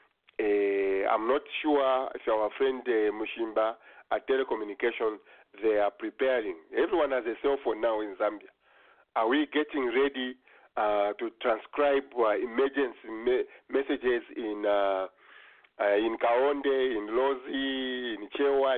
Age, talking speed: 50-69, 135 wpm